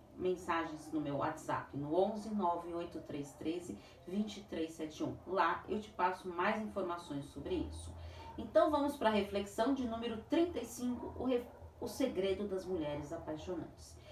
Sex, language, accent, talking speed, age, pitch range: female, Portuguese, Brazilian, 135 wpm, 40-59, 180-235 Hz